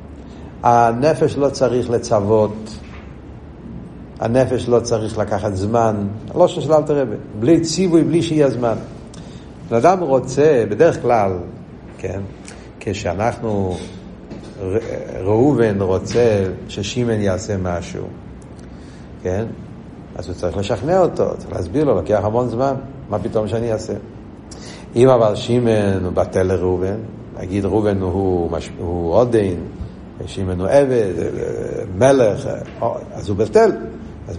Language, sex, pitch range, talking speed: Hebrew, male, 100-145 Hz, 110 wpm